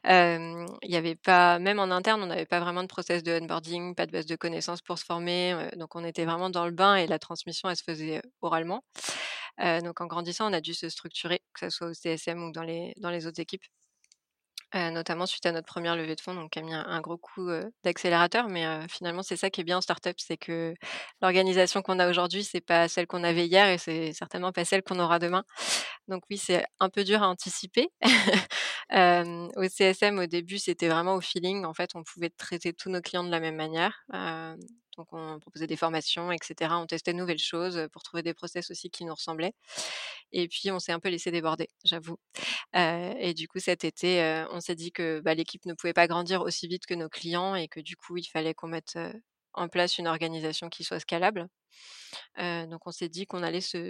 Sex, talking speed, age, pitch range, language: female, 235 wpm, 20-39, 165-180 Hz, French